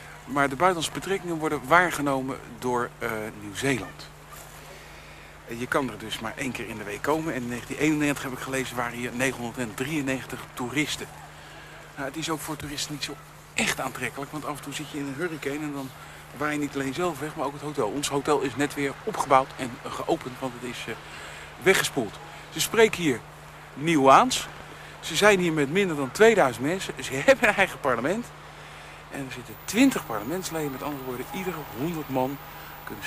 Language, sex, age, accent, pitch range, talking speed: Dutch, male, 60-79, Dutch, 130-165 Hz, 185 wpm